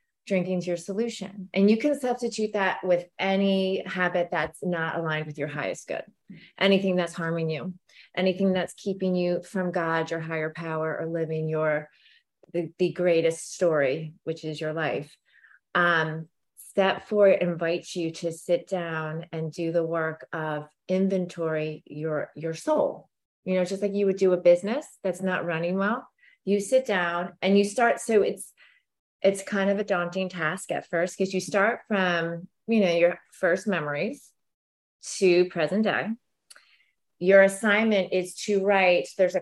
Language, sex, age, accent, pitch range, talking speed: English, female, 30-49, American, 170-200 Hz, 165 wpm